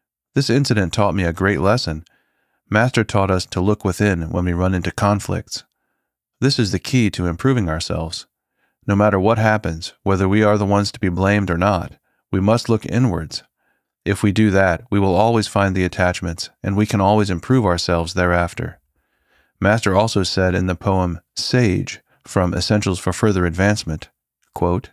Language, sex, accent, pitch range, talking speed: English, male, American, 90-105 Hz, 175 wpm